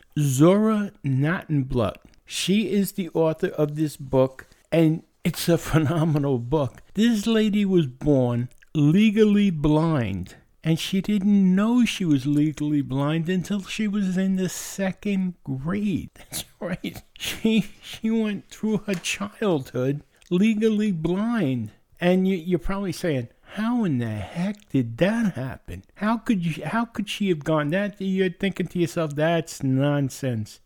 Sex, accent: male, American